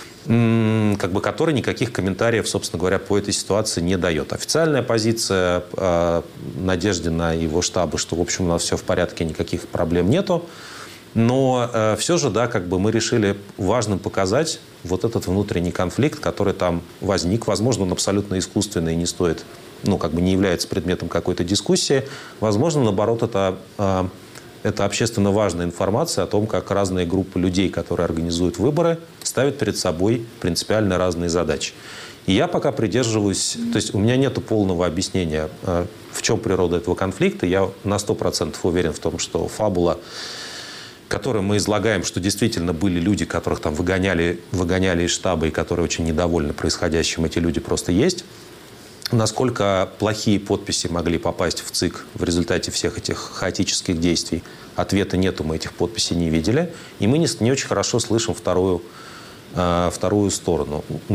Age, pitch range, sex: 30-49, 85-110 Hz, male